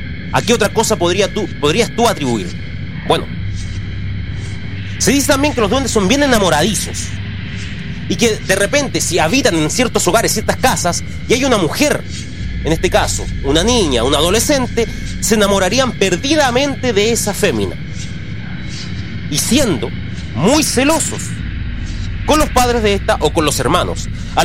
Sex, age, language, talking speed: male, 30-49, Spanish, 150 wpm